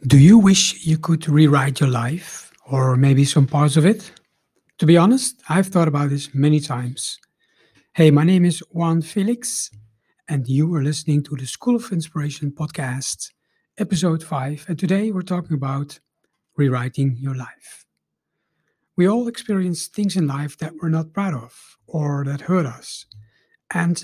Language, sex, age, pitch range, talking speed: English, male, 60-79, 145-190 Hz, 160 wpm